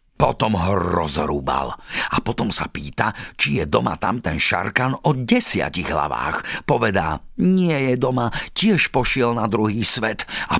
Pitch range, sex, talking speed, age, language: 100-140 Hz, male, 145 wpm, 50-69, Slovak